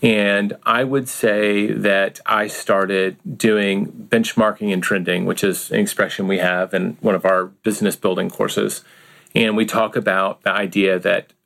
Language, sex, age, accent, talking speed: English, male, 40-59, American, 160 wpm